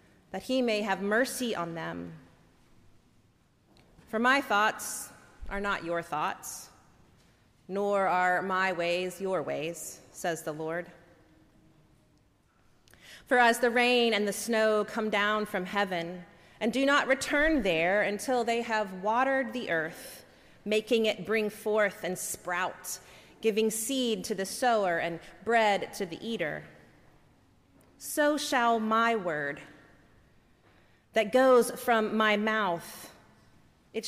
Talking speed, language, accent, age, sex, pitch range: 125 wpm, English, American, 30-49, female, 180-230 Hz